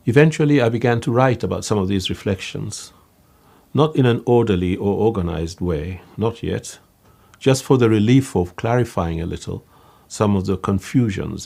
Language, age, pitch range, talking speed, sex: Malayalam, 50-69, 90-115 Hz, 160 wpm, male